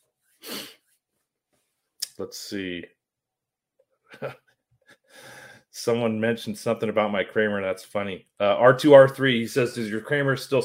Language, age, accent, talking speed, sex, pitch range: English, 30-49, American, 105 wpm, male, 100-130 Hz